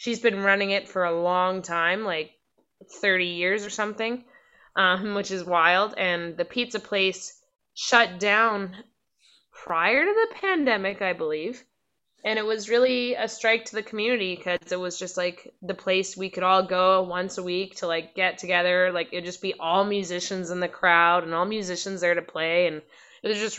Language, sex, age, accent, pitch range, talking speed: English, female, 20-39, American, 180-215 Hz, 190 wpm